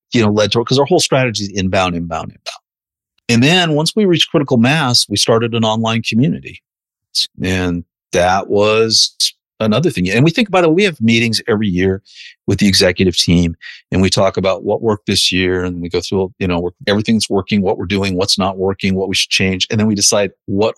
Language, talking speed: English, 215 wpm